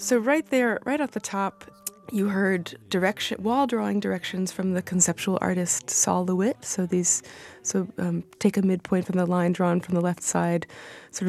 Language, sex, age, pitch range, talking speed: English, female, 20-39, 170-205 Hz, 185 wpm